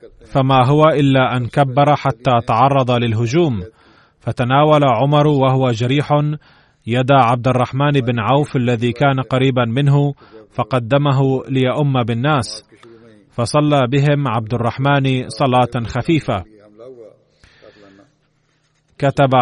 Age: 30-49